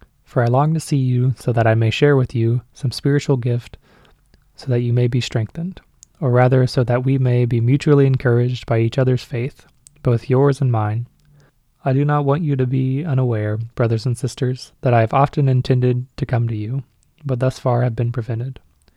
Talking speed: 205 wpm